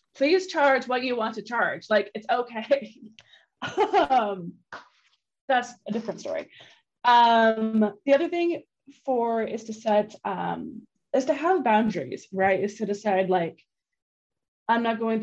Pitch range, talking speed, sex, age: 195-235 Hz, 140 wpm, female, 20-39